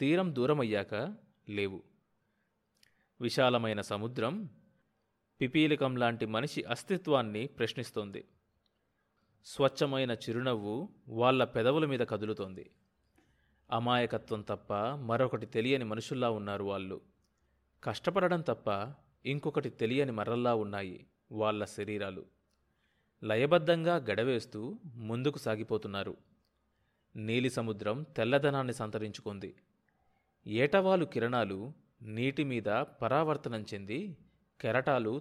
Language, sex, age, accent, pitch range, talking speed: Telugu, male, 30-49, native, 105-135 Hz, 80 wpm